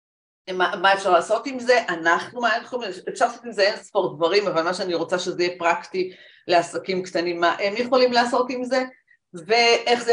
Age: 40-59